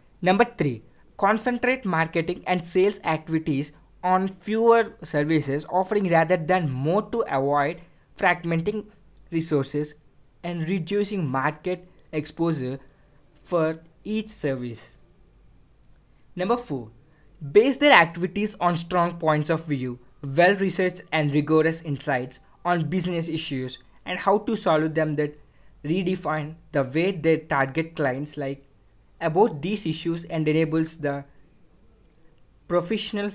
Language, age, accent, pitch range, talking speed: English, 20-39, Indian, 145-185 Hz, 110 wpm